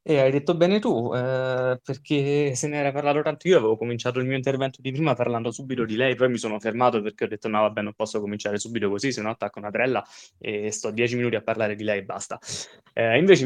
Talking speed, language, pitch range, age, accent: 240 wpm, Italian, 110-135 Hz, 20-39, native